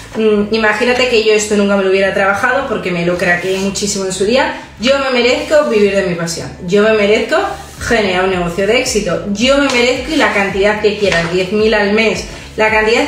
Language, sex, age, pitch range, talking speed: Spanish, female, 30-49, 200-245 Hz, 200 wpm